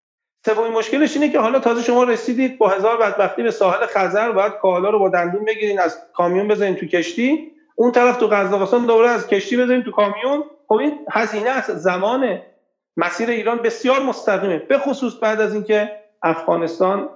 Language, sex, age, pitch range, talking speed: Persian, male, 40-59, 150-220 Hz, 170 wpm